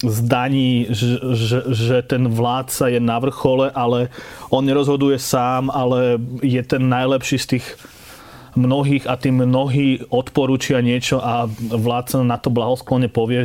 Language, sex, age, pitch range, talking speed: Slovak, male, 30-49, 120-130 Hz, 130 wpm